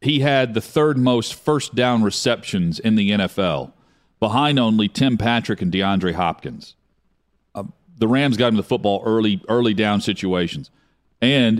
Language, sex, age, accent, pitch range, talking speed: English, male, 40-59, American, 95-125 Hz, 155 wpm